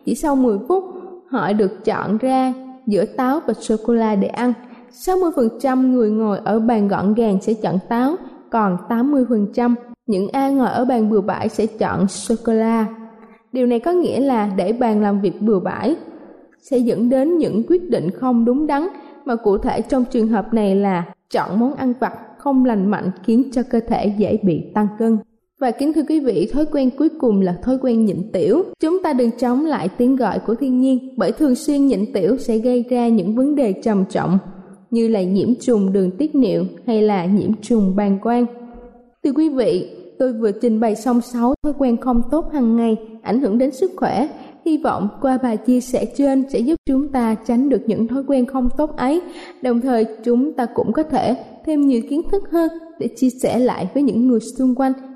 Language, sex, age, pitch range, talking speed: Vietnamese, female, 20-39, 220-265 Hz, 205 wpm